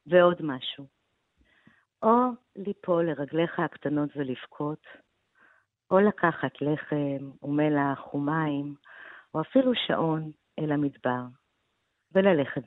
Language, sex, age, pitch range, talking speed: Hebrew, female, 50-69, 130-165 Hz, 85 wpm